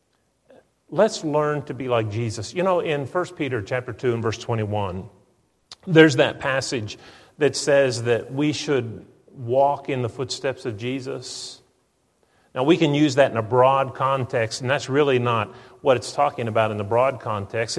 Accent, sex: American, male